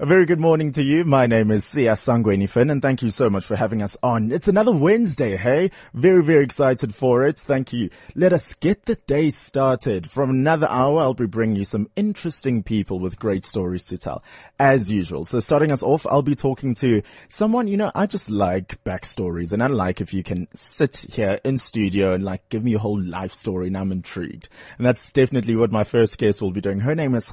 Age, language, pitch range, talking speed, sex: 20-39, English, 105-145 Hz, 225 wpm, male